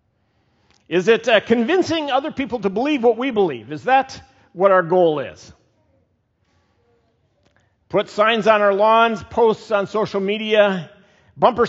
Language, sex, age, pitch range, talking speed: English, male, 50-69, 145-230 Hz, 140 wpm